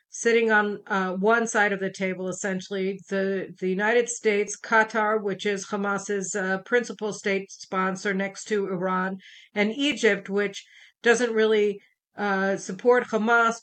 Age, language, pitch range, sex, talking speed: 50-69, English, 195-225 Hz, female, 140 wpm